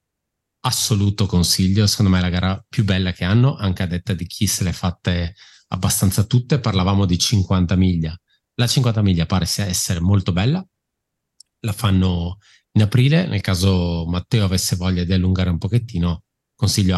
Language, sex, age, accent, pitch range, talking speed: Italian, male, 30-49, native, 90-110 Hz, 165 wpm